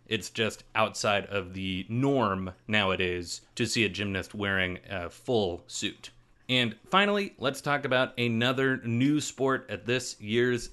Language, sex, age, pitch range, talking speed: English, male, 30-49, 105-135 Hz, 145 wpm